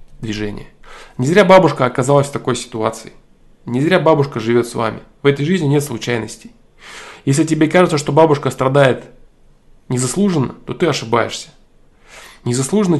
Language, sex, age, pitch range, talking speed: Russian, male, 20-39, 120-165 Hz, 140 wpm